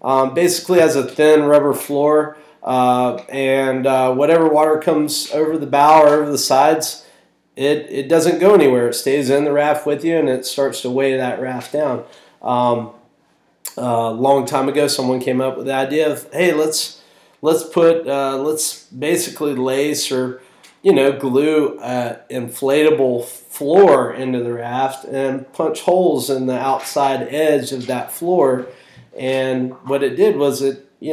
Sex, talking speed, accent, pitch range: male, 170 wpm, American, 125-150 Hz